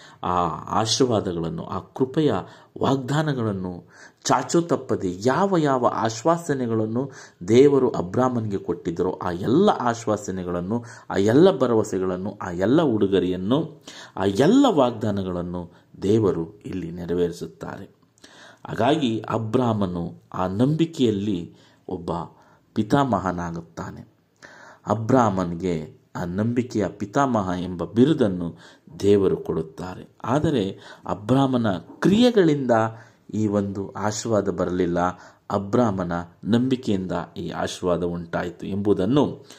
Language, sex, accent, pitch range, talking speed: Kannada, male, native, 90-125 Hz, 80 wpm